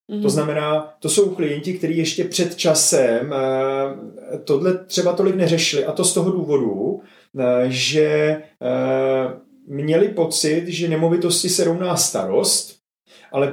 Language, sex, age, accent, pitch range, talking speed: Czech, male, 30-49, native, 140-175 Hz, 135 wpm